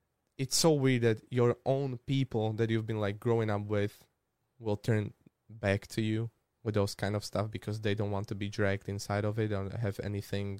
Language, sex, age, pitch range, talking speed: Slovak, male, 20-39, 105-120 Hz, 210 wpm